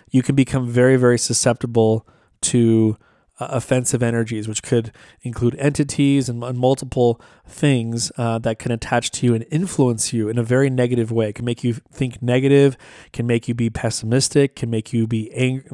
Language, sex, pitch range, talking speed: English, male, 115-135 Hz, 185 wpm